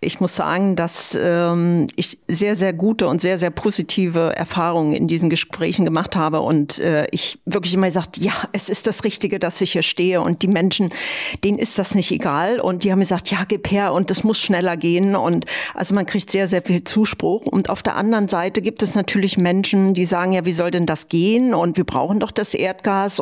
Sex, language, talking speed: female, German, 220 wpm